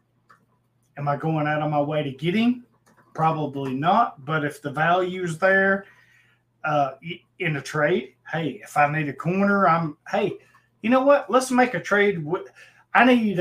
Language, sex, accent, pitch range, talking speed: English, male, American, 130-190 Hz, 175 wpm